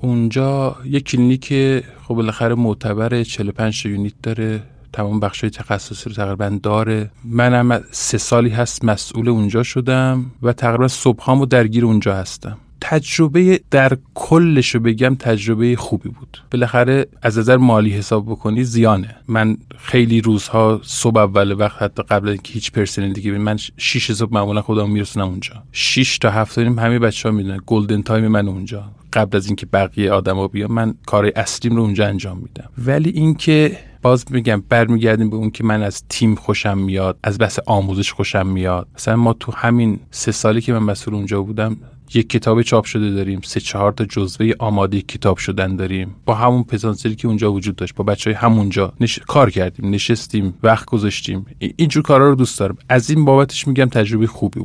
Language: Persian